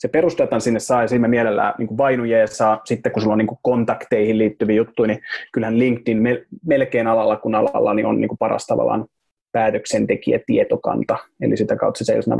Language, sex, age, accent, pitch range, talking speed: Finnish, male, 30-49, native, 110-135 Hz, 155 wpm